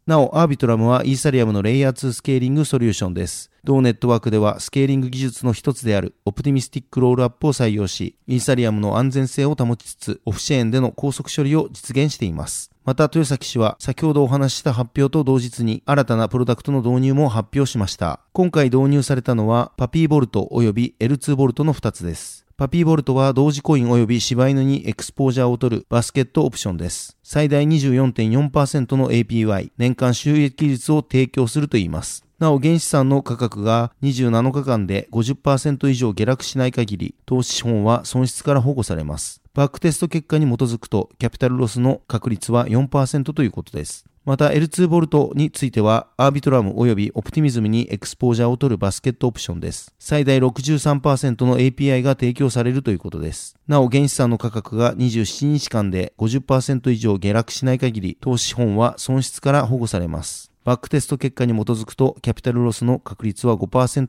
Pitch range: 115-140 Hz